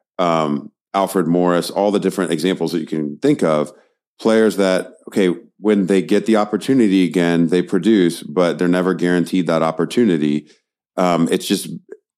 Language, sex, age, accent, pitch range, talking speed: English, male, 30-49, American, 80-95 Hz, 160 wpm